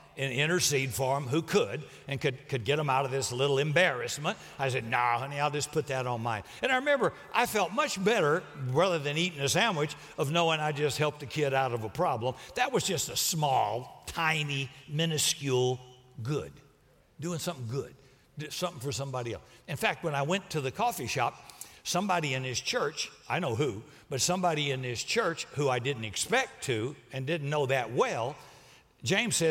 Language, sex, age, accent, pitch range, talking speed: English, male, 60-79, American, 130-170 Hz, 195 wpm